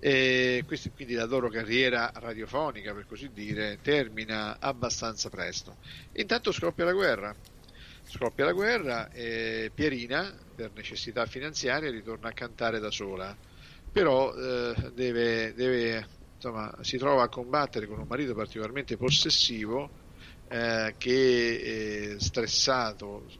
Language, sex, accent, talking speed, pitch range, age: Italian, male, native, 120 wpm, 105-120 Hz, 50-69